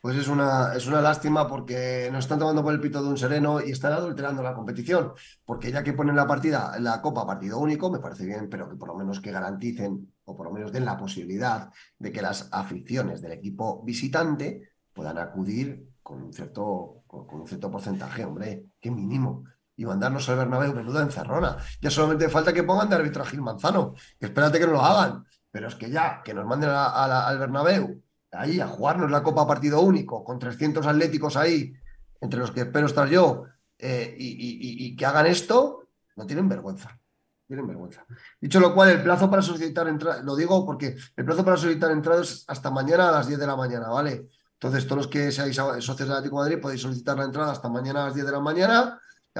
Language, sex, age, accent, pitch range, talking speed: Spanish, male, 30-49, Spanish, 125-155 Hz, 220 wpm